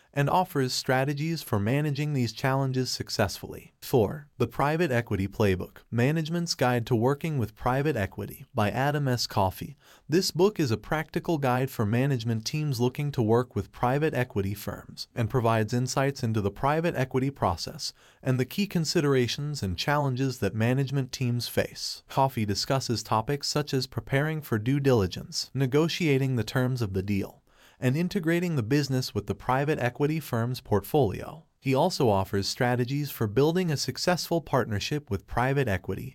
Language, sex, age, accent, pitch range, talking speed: English, male, 30-49, American, 115-145 Hz, 160 wpm